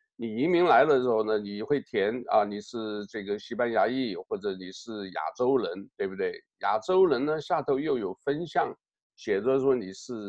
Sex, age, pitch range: male, 50-69, 110-155 Hz